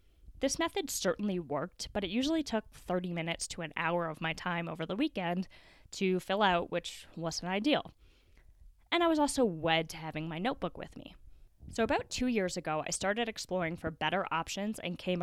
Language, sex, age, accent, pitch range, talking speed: English, female, 10-29, American, 155-200 Hz, 195 wpm